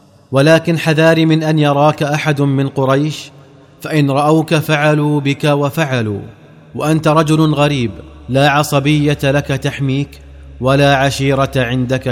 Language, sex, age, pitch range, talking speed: Arabic, male, 30-49, 130-145 Hz, 115 wpm